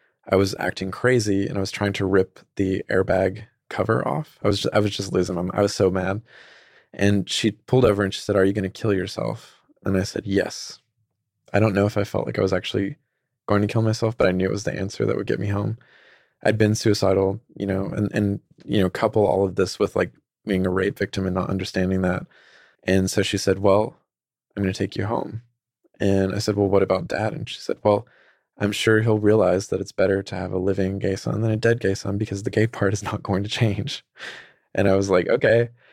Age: 20-39